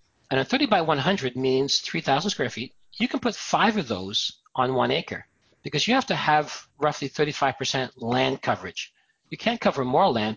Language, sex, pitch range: English, male, 125-165 Hz